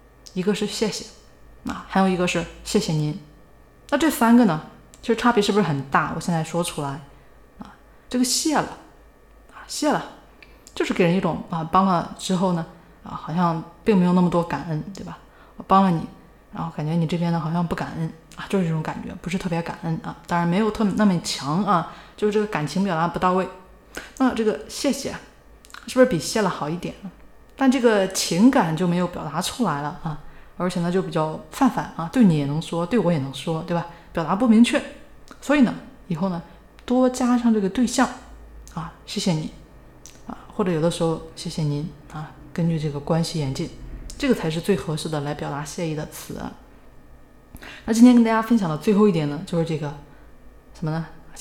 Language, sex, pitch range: Chinese, female, 160-215 Hz